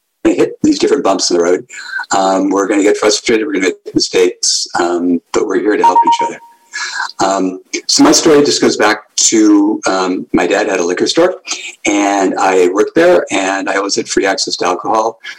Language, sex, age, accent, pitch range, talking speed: English, male, 60-79, American, 310-420 Hz, 205 wpm